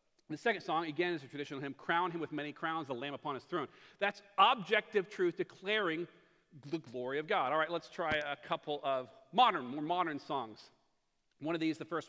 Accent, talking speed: American, 210 wpm